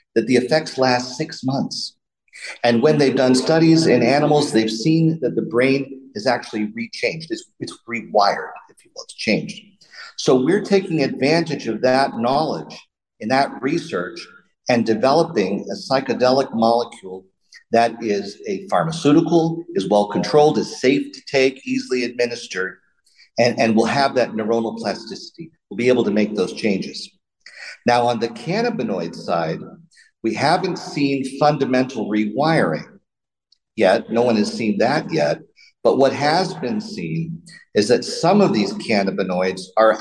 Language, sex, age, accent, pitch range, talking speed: English, male, 50-69, American, 115-165 Hz, 150 wpm